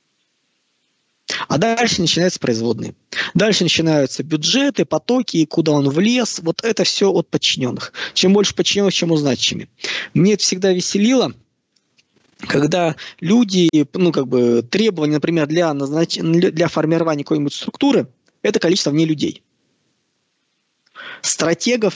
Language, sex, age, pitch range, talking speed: Russian, male, 20-39, 135-185 Hz, 120 wpm